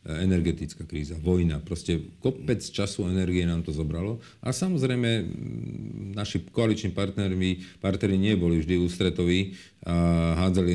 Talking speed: 115 wpm